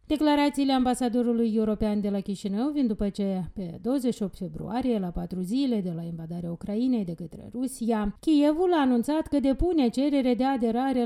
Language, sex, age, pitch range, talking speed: Romanian, female, 30-49, 200-270 Hz, 165 wpm